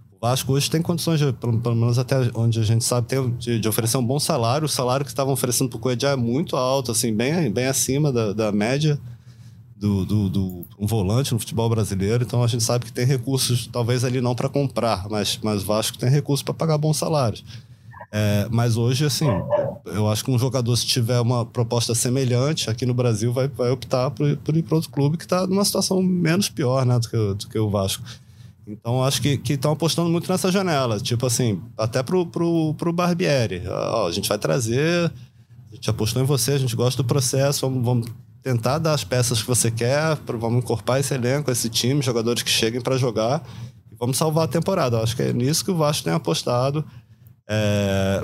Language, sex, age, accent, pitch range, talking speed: Portuguese, male, 20-39, Brazilian, 115-140 Hz, 210 wpm